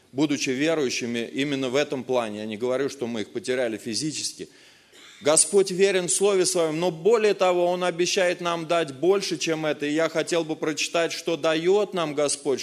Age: 20-39